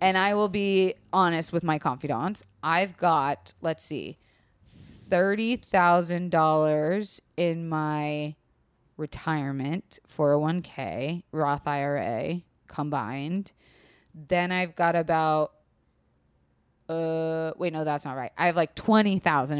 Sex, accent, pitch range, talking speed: female, American, 145-185 Hz, 105 wpm